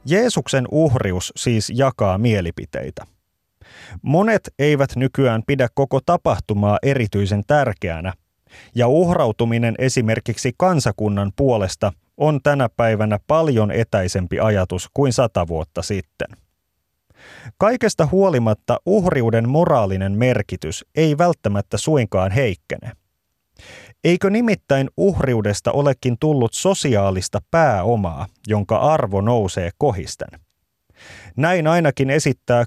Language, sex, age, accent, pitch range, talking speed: Finnish, male, 30-49, native, 100-140 Hz, 95 wpm